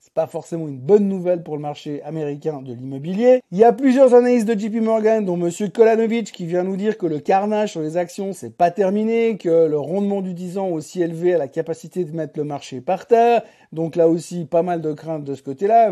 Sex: male